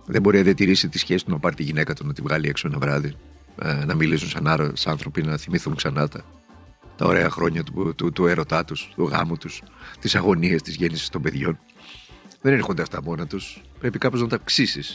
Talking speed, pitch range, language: 230 wpm, 80-125 Hz, Greek